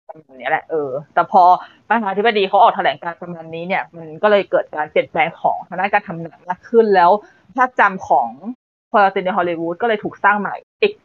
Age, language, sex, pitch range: 20-39, Thai, female, 190-255 Hz